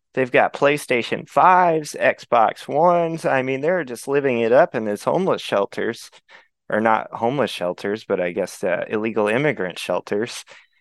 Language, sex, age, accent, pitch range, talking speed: English, male, 20-39, American, 110-150 Hz, 155 wpm